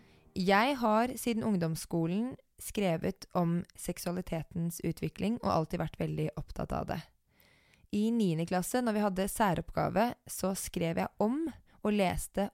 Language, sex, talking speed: English, female, 135 wpm